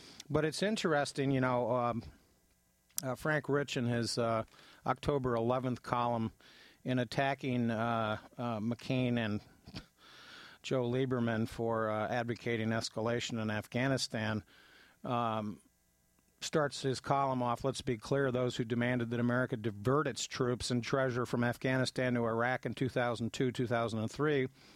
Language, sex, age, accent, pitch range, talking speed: English, male, 50-69, American, 115-135 Hz, 130 wpm